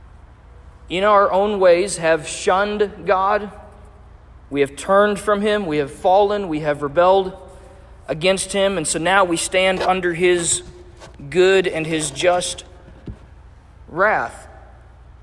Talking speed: 125 wpm